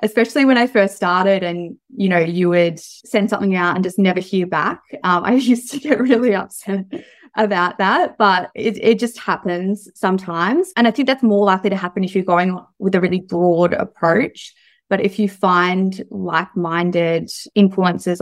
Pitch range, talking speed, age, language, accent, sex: 175-205 Hz, 180 wpm, 20-39, English, Australian, female